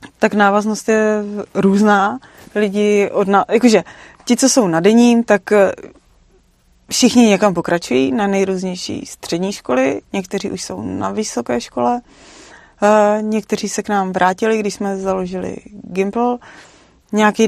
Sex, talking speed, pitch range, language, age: female, 130 wpm, 185-205 Hz, Czech, 30-49